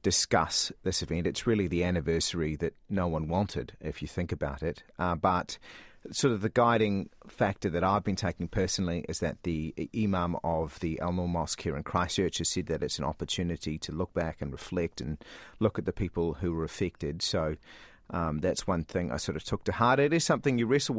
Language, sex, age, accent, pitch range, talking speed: English, male, 30-49, Australian, 85-105 Hz, 215 wpm